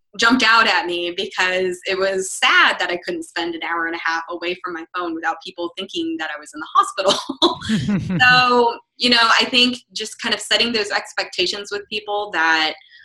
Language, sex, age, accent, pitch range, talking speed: English, female, 20-39, American, 165-215 Hz, 200 wpm